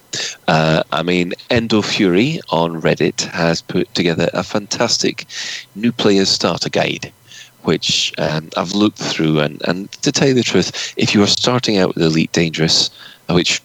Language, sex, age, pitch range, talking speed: English, male, 30-49, 80-110 Hz, 165 wpm